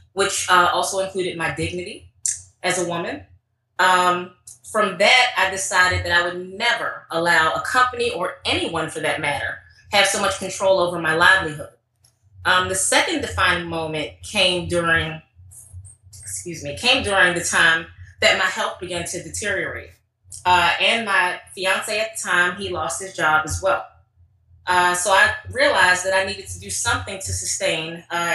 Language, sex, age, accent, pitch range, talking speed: English, female, 20-39, American, 120-190 Hz, 165 wpm